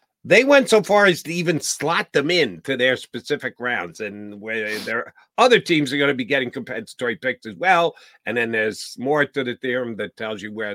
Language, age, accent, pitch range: English, 50-69, American, 120-170 Hz